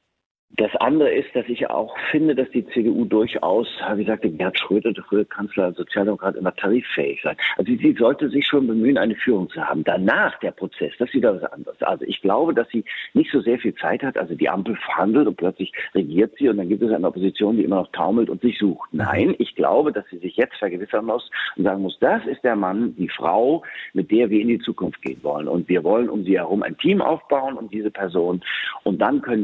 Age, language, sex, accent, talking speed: 50-69, German, male, German, 230 wpm